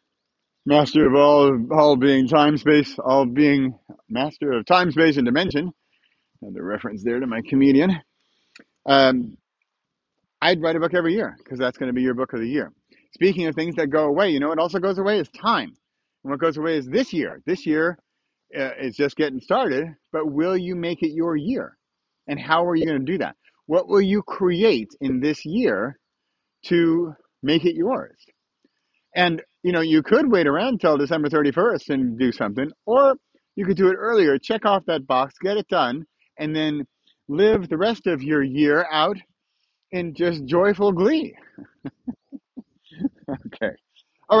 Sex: male